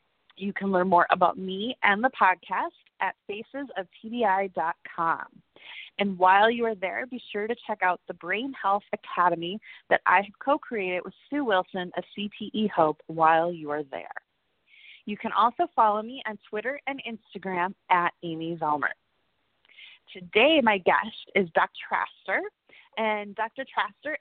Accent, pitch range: American, 185-240 Hz